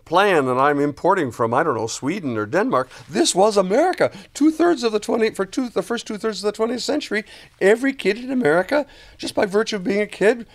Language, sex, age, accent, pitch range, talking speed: English, male, 50-69, American, 140-205 Hz, 215 wpm